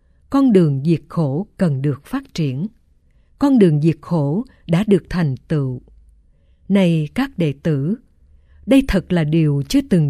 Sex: female